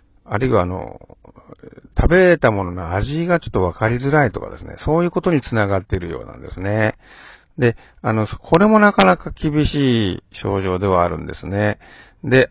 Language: Japanese